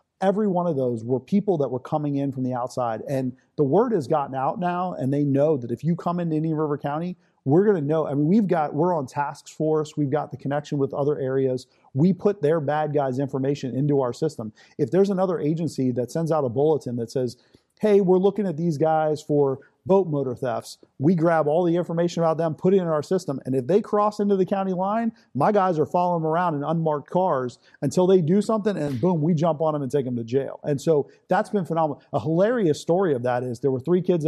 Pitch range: 140-180 Hz